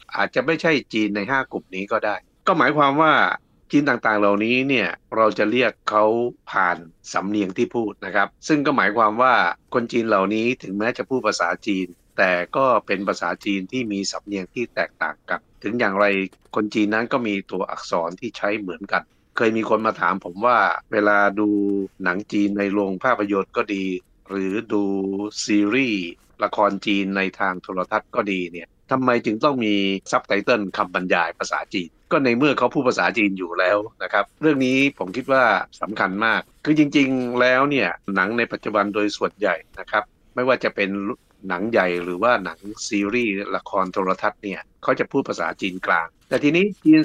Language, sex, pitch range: Thai, male, 100-125 Hz